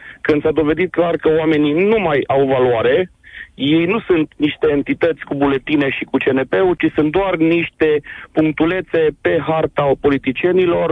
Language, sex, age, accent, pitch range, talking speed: Romanian, male, 40-59, native, 150-190 Hz, 155 wpm